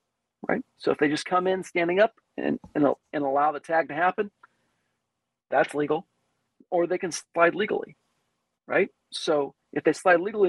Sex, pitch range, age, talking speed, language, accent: male, 145-180 Hz, 40-59, 170 wpm, English, American